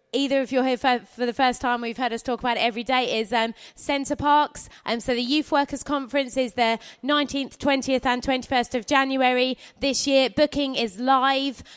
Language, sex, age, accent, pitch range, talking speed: English, female, 20-39, British, 230-265 Hz, 210 wpm